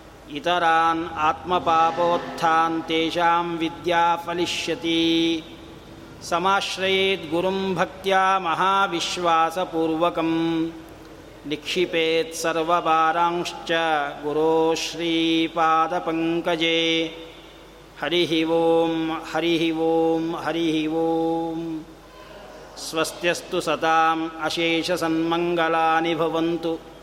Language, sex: Kannada, male